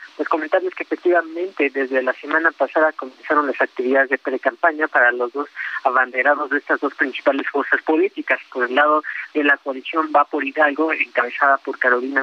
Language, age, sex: Spanish, 30-49, male